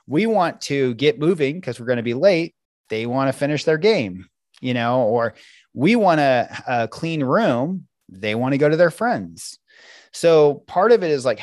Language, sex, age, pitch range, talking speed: English, male, 30-49, 110-145 Hz, 200 wpm